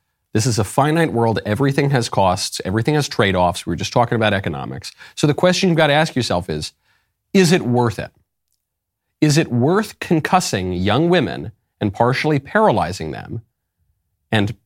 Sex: male